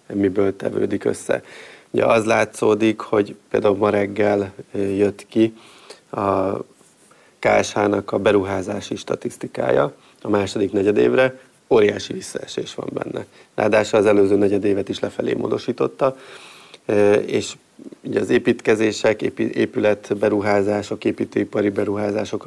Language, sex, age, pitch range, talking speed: Hungarian, male, 30-49, 100-105 Hz, 105 wpm